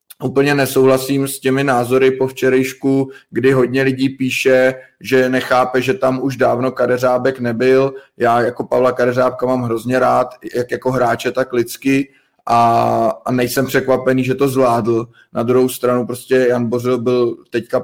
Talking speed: 155 wpm